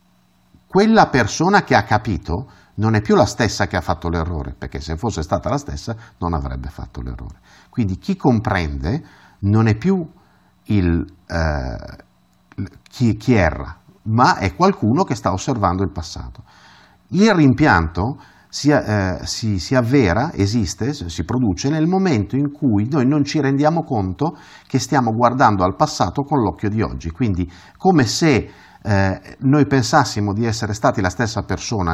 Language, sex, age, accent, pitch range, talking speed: Italian, male, 50-69, native, 90-145 Hz, 150 wpm